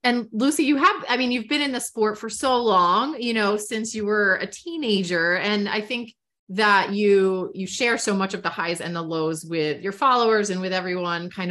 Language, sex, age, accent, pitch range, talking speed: English, female, 30-49, American, 195-245 Hz, 225 wpm